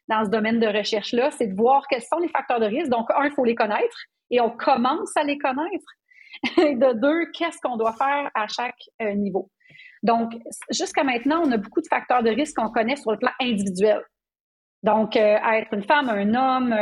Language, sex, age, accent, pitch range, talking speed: French, female, 30-49, Canadian, 220-270 Hz, 215 wpm